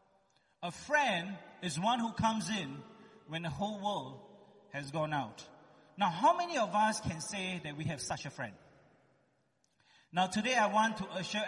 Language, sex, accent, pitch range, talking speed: English, male, Malaysian, 190-230 Hz, 175 wpm